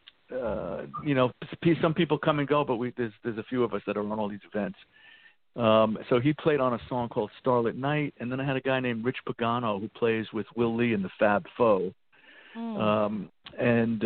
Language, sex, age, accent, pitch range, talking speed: English, male, 50-69, American, 105-130 Hz, 220 wpm